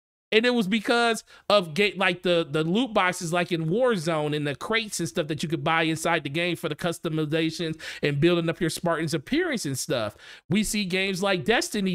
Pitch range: 155-205 Hz